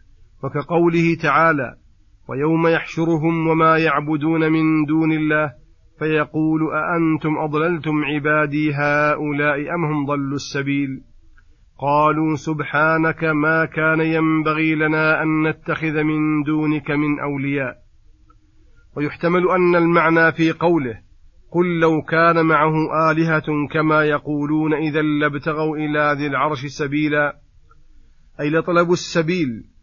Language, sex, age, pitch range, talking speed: Arabic, male, 40-59, 145-160 Hz, 105 wpm